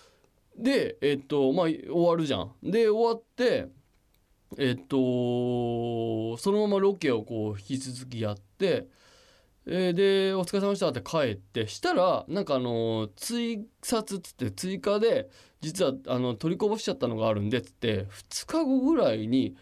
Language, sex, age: Japanese, male, 20-39